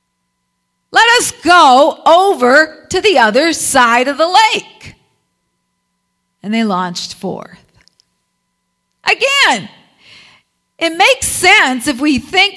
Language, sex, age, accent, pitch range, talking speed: English, female, 50-69, American, 255-325 Hz, 105 wpm